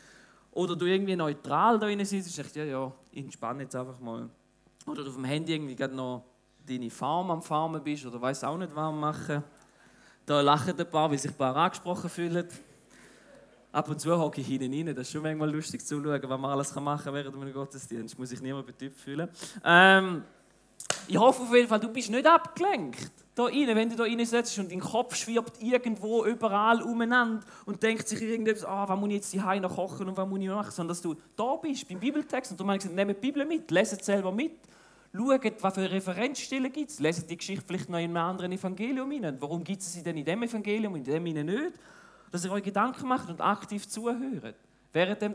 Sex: male